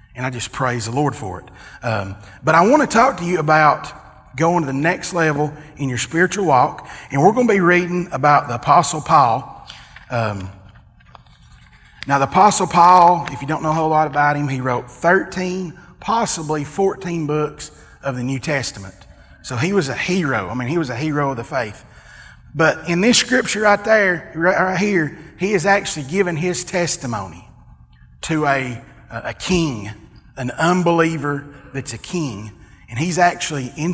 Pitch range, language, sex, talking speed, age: 130-180 Hz, English, male, 175 wpm, 30-49